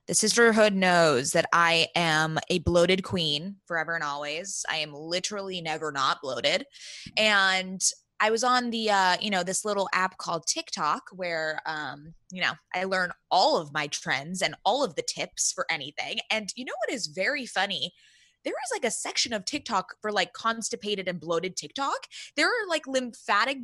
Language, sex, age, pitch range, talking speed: English, female, 20-39, 175-230 Hz, 185 wpm